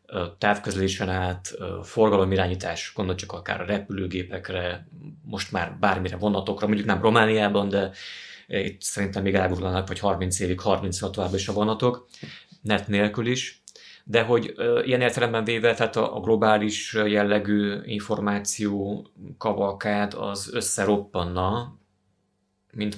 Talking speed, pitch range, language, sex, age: 120 wpm, 95-110 Hz, Hungarian, male, 30-49